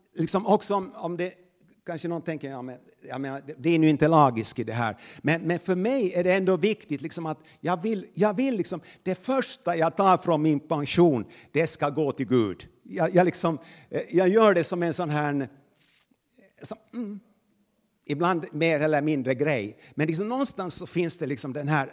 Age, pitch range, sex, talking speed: 50-69, 135-180 Hz, male, 195 wpm